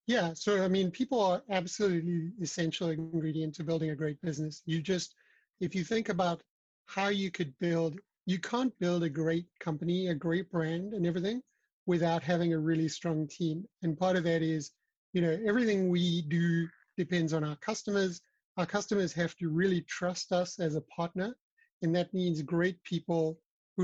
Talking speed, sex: 180 wpm, male